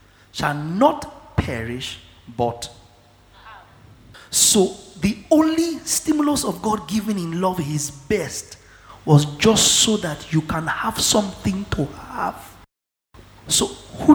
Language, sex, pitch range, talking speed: English, male, 115-190 Hz, 120 wpm